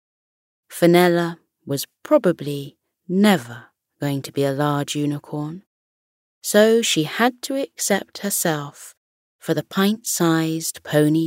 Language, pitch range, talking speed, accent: English, 155-210 Hz, 105 wpm, British